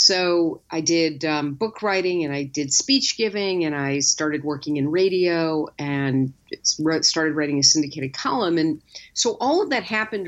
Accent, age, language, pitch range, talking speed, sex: American, 50-69, English, 155-205 Hz, 170 wpm, female